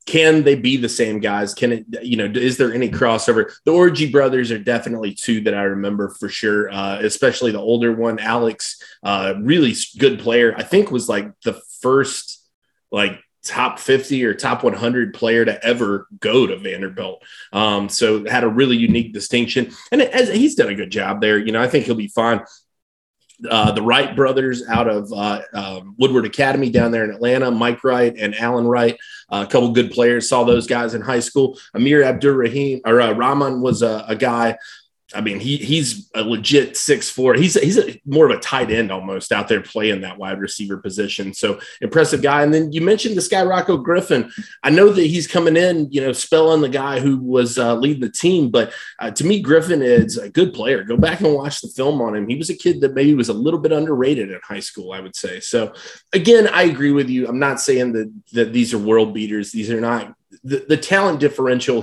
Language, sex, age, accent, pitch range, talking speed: English, male, 30-49, American, 110-145 Hz, 215 wpm